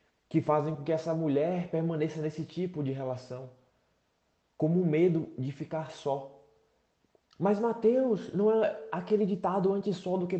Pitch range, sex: 120-170 Hz, male